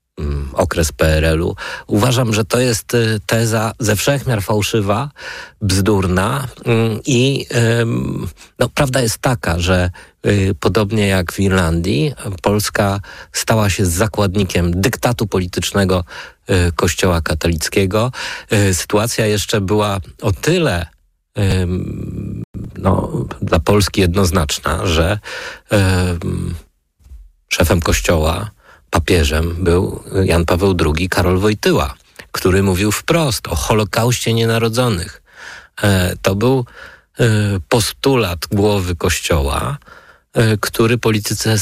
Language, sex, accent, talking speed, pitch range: Polish, male, native, 85 wpm, 90-115 Hz